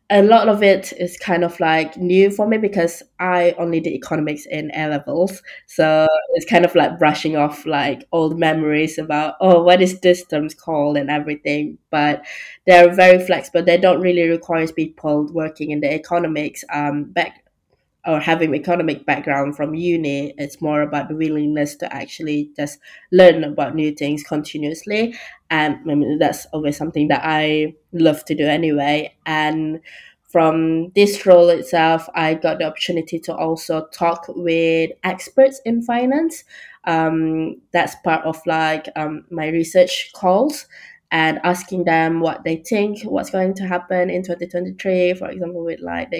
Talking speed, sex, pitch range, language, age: 165 wpm, female, 155-180 Hz, English, 20-39